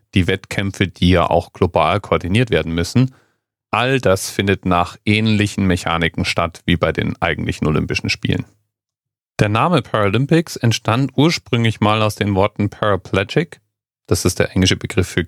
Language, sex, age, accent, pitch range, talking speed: German, male, 40-59, German, 95-120 Hz, 150 wpm